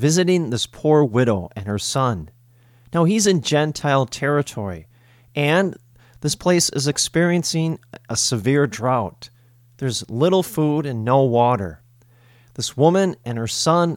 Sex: male